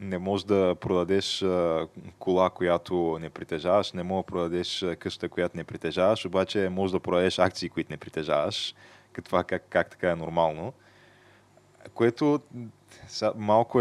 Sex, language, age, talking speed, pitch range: male, Bulgarian, 20-39, 135 wpm, 85-100 Hz